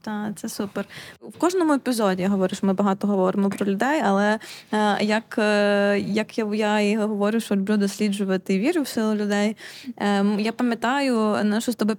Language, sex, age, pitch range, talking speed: Ukrainian, female, 20-39, 200-240 Hz, 185 wpm